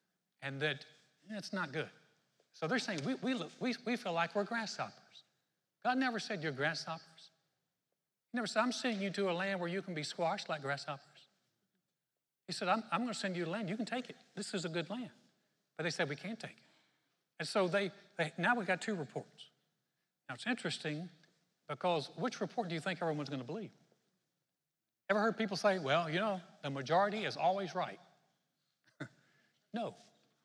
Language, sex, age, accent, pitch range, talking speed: English, male, 60-79, American, 155-210 Hz, 195 wpm